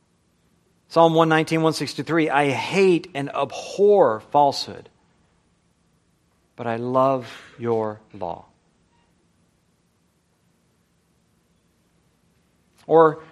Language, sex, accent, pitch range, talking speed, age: English, male, American, 145-210 Hz, 65 wpm, 40-59